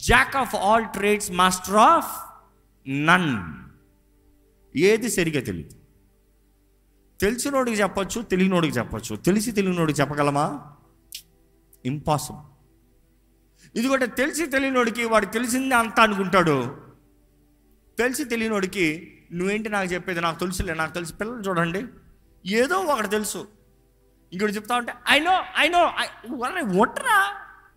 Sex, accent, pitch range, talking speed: male, native, 130-205 Hz, 305 wpm